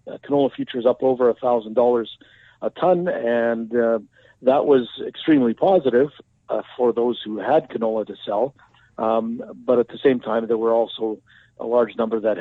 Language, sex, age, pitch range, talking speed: English, male, 50-69, 115-140 Hz, 180 wpm